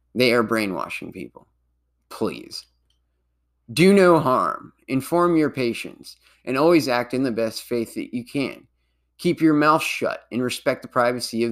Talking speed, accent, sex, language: 155 wpm, American, male, English